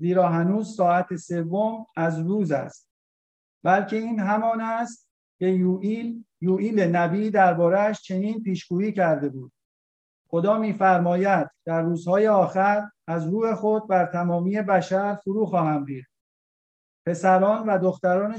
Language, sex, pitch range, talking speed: Persian, male, 165-210 Hz, 120 wpm